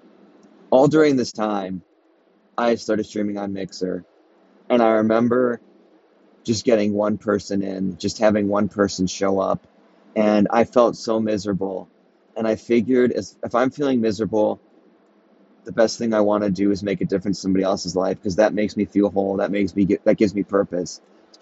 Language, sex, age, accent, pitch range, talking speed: English, male, 30-49, American, 100-110 Hz, 175 wpm